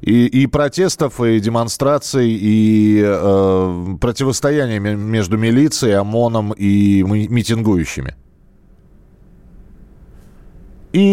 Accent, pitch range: native, 100-130 Hz